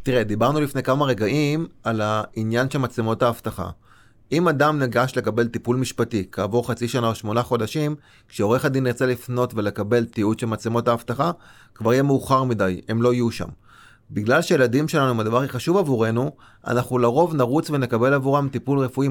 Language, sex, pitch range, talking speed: Hebrew, male, 115-150 Hz, 165 wpm